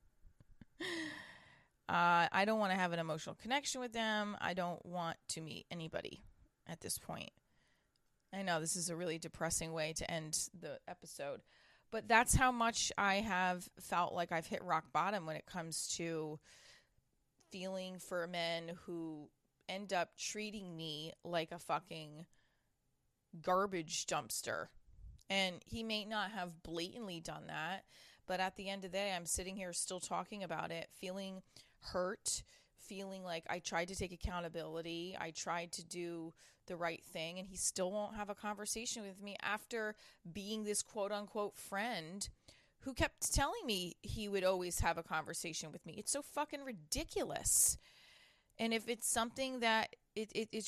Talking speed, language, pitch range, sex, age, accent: 160 wpm, English, 165-210 Hz, female, 20-39, American